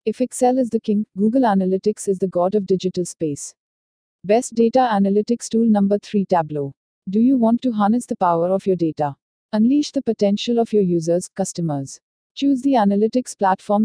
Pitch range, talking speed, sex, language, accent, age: 180-225 Hz, 180 wpm, female, English, Indian, 50-69